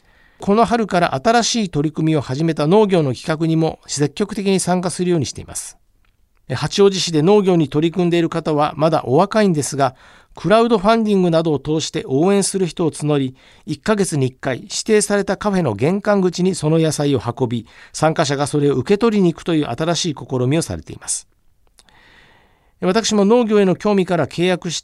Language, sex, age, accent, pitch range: Japanese, male, 50-69, native, 145-195 Hz